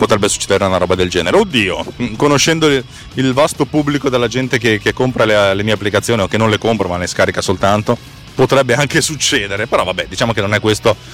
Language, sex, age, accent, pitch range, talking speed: Italian, male, 30-49, native, 100-140 Hz, 210 wpm